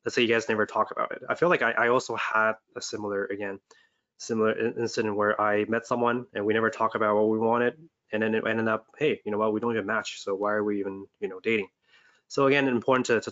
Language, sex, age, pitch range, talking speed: English, male, 20-39, 105-125 Hz, 265 wpm